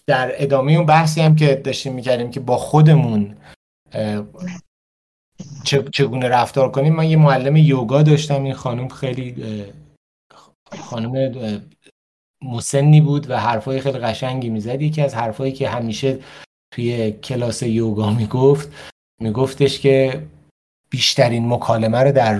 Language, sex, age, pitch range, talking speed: Persian, male, 30-49, 110-140 Hz, 120 wpm